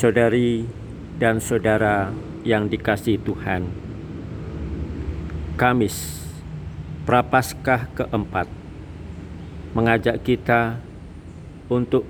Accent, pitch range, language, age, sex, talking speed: native, 85-120 Hz, Indonesian, 50-69, male, 60 wpm